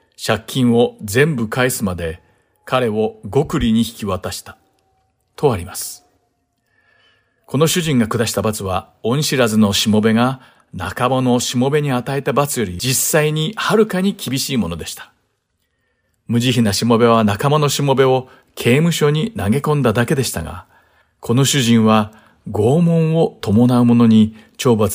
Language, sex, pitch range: Japanese, male, 110-140 Hz